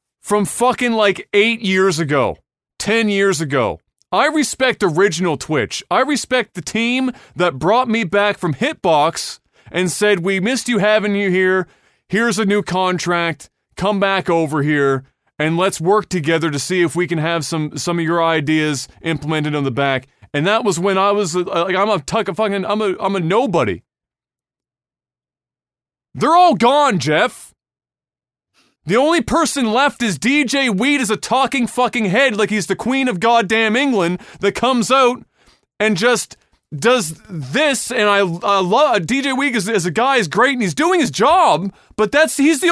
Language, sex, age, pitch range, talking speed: English, male, 20-39, 180-260 Hz, 175 wpm